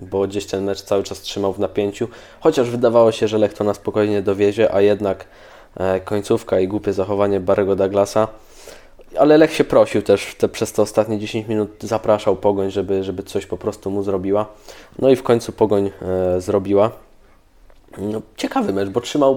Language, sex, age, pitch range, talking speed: Polish, male, 20-39, 100-110 Hz, 175 wpm